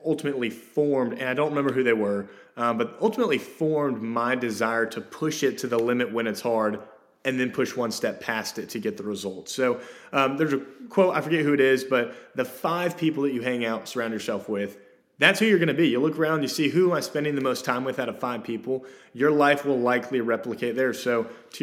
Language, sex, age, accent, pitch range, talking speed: English, male, 30-49, American, 115-145 Hz, 240 wpm